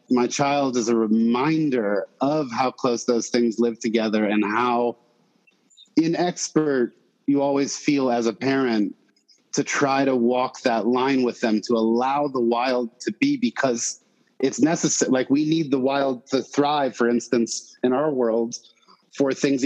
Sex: male